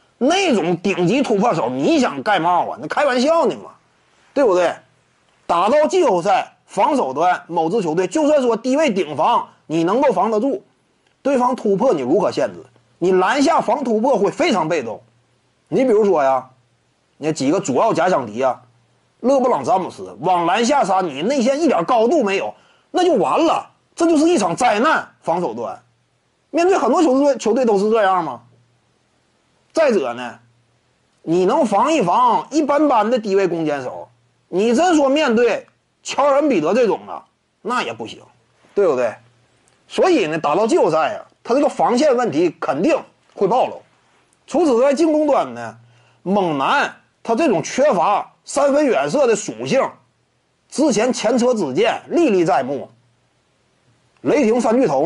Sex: male